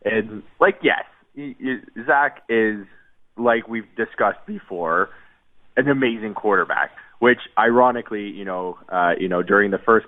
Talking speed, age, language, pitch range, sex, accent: 130 wpm, 20-39, English, 95-125 Hz, male, American